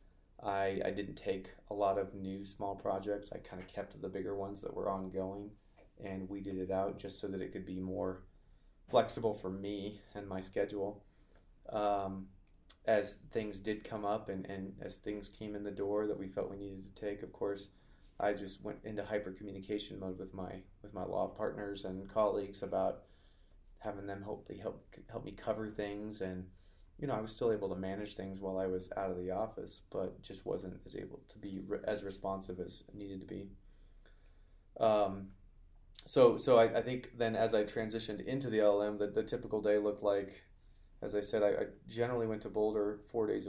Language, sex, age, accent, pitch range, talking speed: English, male, 20-39, American, 95-105 Hz, 200 wpm